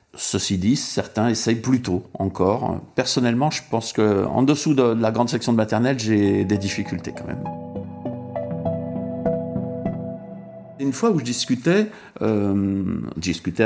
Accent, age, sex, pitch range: French, 60-79, male, 100-145 Hz